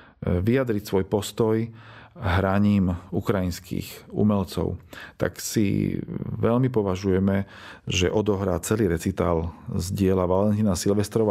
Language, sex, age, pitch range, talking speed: Slovak, male, 40-59, 100-120 Hz, 95 wpm